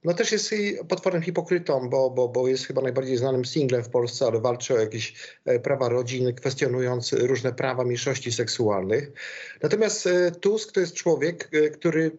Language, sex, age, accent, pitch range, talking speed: Polish, male, 50-69, native, 130-170 Hz, 160 wpm